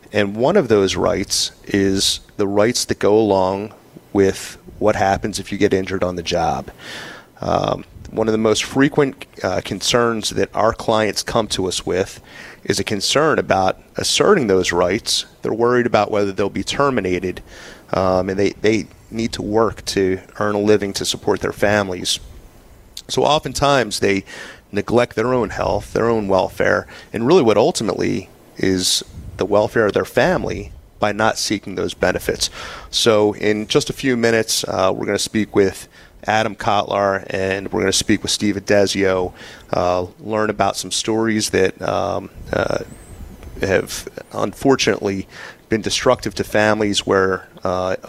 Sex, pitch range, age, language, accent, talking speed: male, 95-110 Hz, 30-49, English, American, 160 wpm